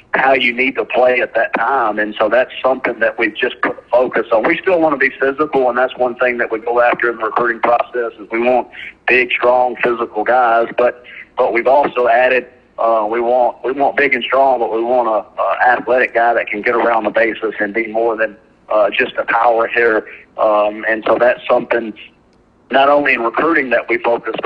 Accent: American